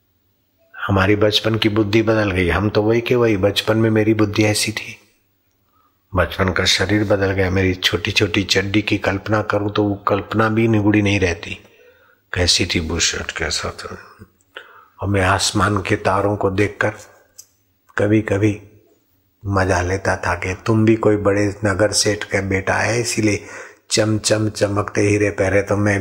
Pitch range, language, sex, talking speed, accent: 95-105 Hz, Hindi, male, 165 wpm, native